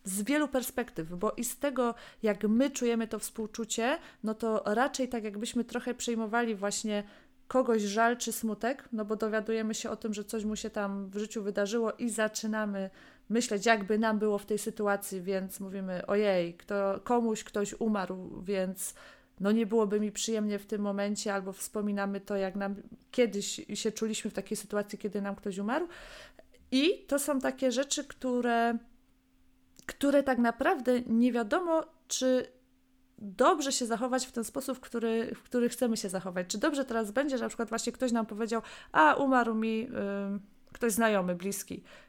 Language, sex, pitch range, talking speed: Polish, female, 205-255 Hz, 170 wpm